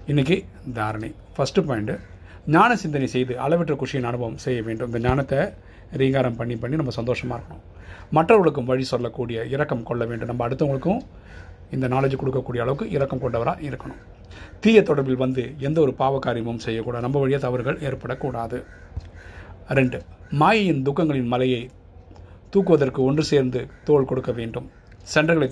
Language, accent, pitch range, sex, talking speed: Tamil, native, 115-140 Hz, male, 125 wpm